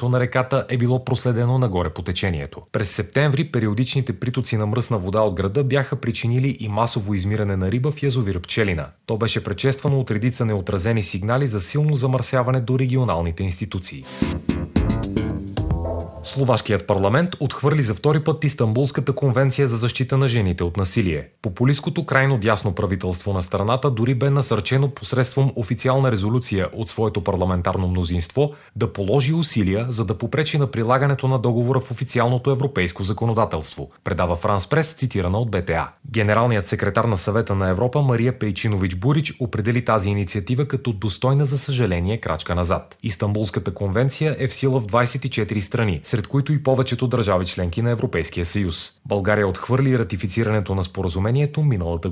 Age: 30-49